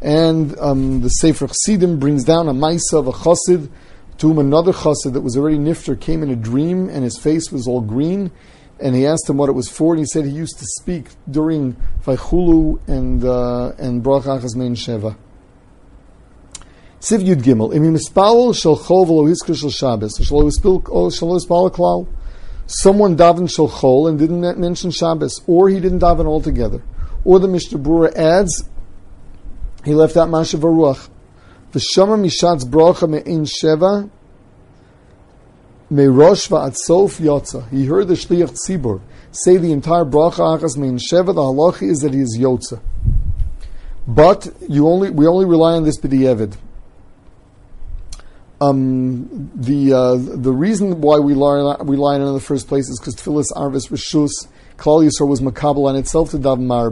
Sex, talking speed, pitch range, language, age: male, 150 wpm, 125-165 Hz, English, 50-69